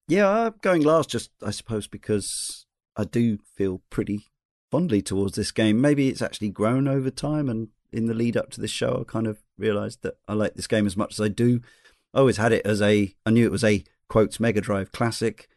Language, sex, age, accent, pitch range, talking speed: English, male, 40-59, British, 105-115 Hz, 225 wpm